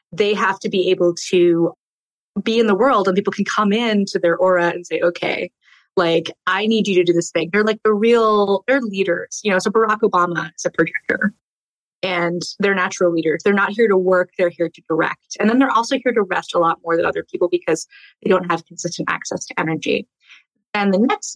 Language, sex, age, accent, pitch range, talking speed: English, female, 20-39, American, 175-230 Hz, 225 wpm